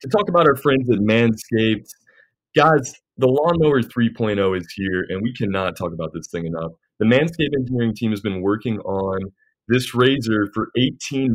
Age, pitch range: 20-39, 95-125 Hz